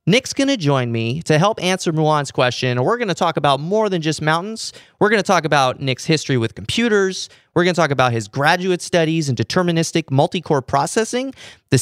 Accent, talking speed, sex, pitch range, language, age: American, 215 wpm, male, 130-200 Hz, English, 30-49